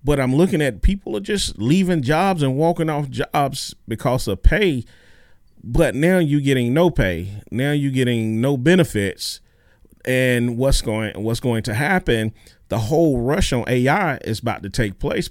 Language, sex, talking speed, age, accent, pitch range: English, male, 175 wpm, 40-59, American, 110-150 Hz